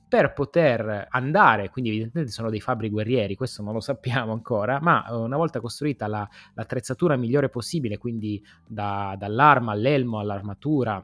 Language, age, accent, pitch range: Italian, 20-39, native, 110-145 Hz